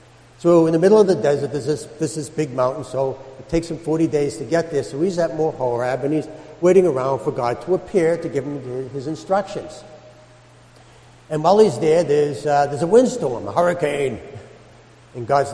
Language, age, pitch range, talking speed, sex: English, 60-79, 125-165 Hz, 205 wpm, male